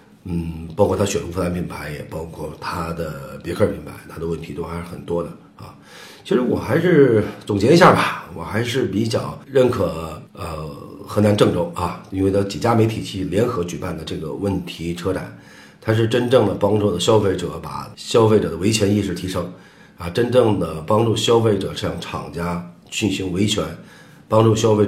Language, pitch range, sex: Chinese, 85-105 Hz, male